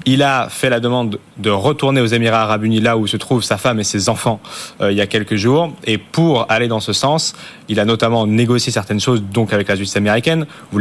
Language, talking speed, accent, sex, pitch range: French, 245 wpm, French, male, 105-125 Hz